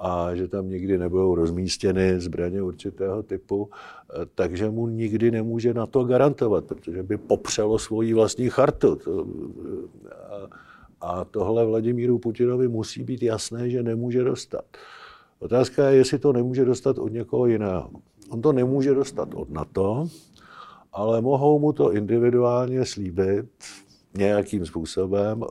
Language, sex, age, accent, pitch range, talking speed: Czech, male, 50-69, native, 95-115 Hz, 130 wpm